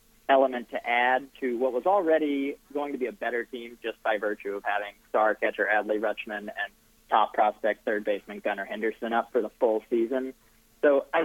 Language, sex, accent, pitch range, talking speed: English, male, American, 115-145 Hz, 190 wpm